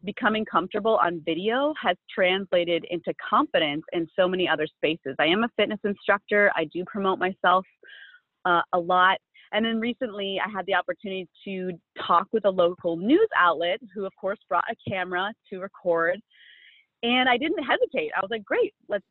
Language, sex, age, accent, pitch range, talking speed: English, female, 30-49, American, 175-220 Hz, 175 wpm